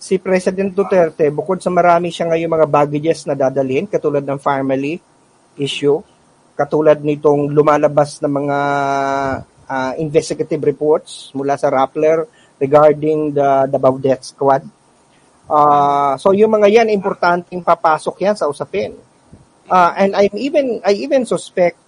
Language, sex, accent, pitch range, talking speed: Filipino, male, native, 150-205 Hz, 130 wpm